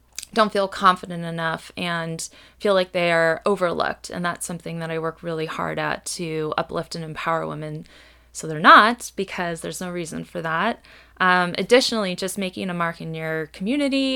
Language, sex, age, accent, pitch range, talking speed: English, female, 20-39, American, 175-215 Hz, 180 wpm